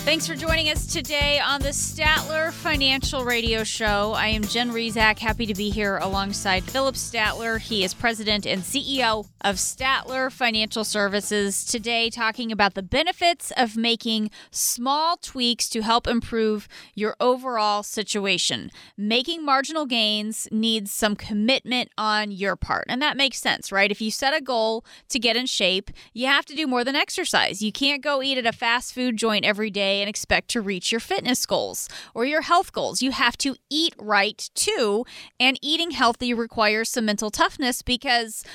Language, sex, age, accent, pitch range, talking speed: English, female, 20-39, American, 215-265 Hz, 175 wpm